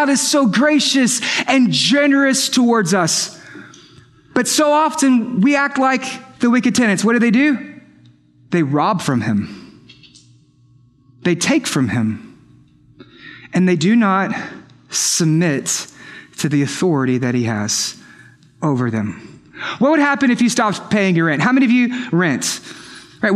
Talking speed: 145 wpm